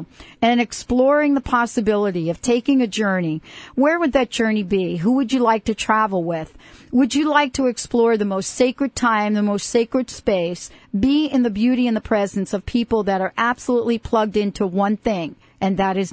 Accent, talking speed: American, 195 wpm